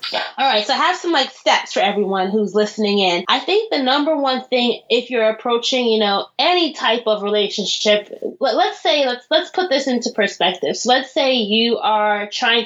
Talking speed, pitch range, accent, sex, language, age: 200 wpm, 205-250 Hz, American, female, English, 20-39